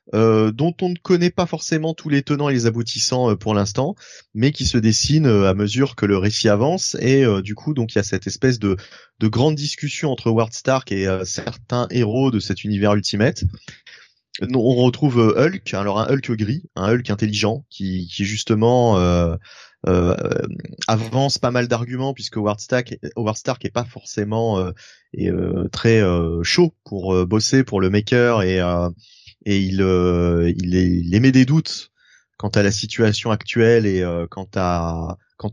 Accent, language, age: French, French, 30-49